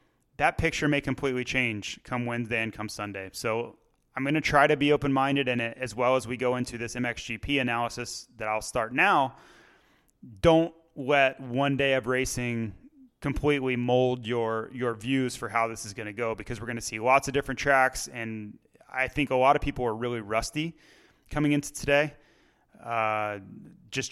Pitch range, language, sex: 120-140 Hz, English, male